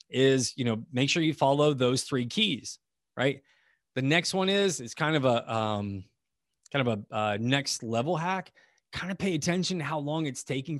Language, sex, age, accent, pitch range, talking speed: English, male, 30-49, American, 115-145 Hz, 195 wpm